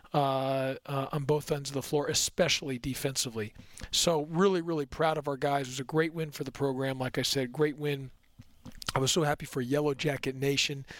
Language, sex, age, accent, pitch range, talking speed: English, male, 40-59, American, 135-155 Hz, 205 wpm